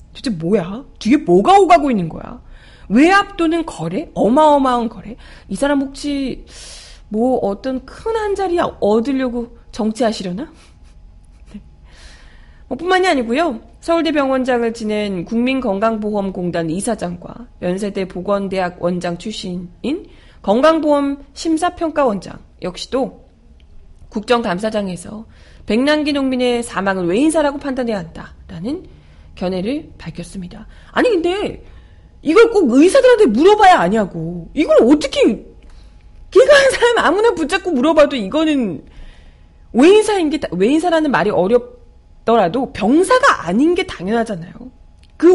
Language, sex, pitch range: Korean, female, 185-310 Hz